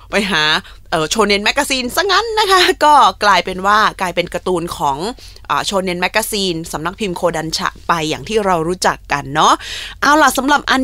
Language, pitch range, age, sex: Thai, 180-245 Hz, 20-39, female